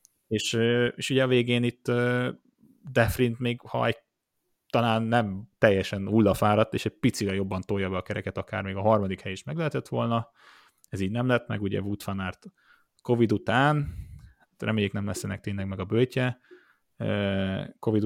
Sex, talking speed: male, 165 wpm